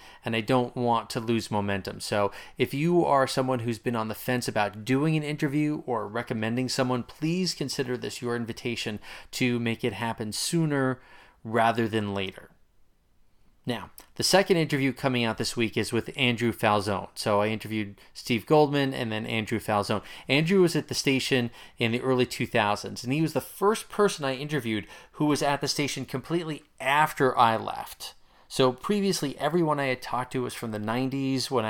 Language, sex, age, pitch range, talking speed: English, male, 30-49, 110-135 Hz, 180 wpm